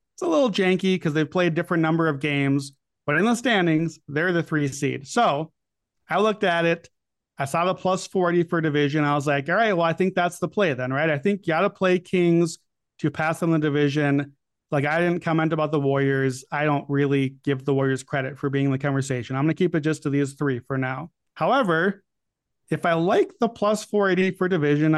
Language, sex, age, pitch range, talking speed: English, male, 30-49, 145-200 Hz, 225 wpm